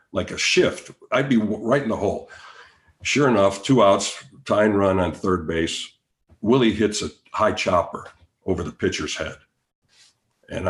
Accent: American